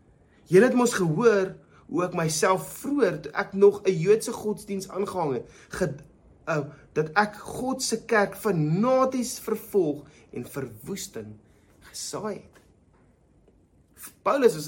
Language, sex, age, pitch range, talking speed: English, male, 30-49, 145-205 Hz, 120 wpm